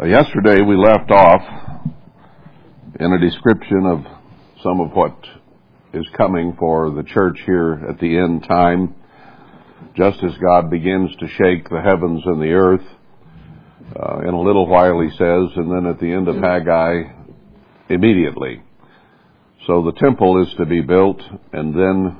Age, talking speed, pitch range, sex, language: 60-79, 150 wpm, 85-100 Hz, male, English